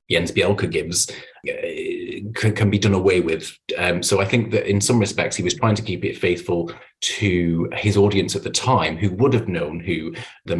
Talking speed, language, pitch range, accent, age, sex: 210 wpm, English, 100-135 Hz, British, 30-49, male